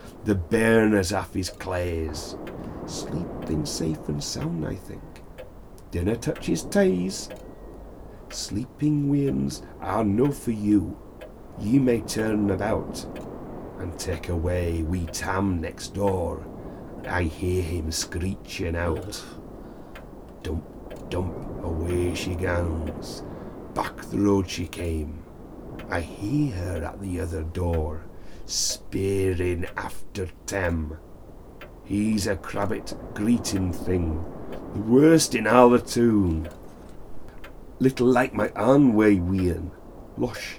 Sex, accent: male, British